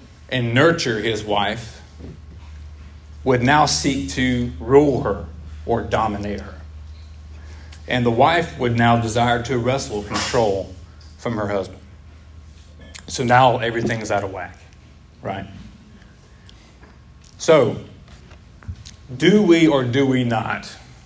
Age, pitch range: 40-59, 95-120 Hz